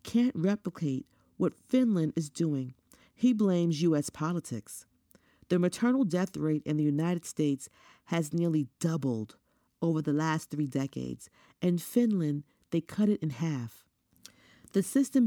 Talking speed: 140 wpm